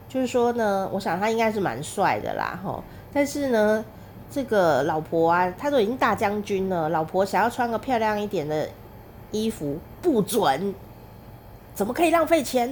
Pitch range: 155-220 Hz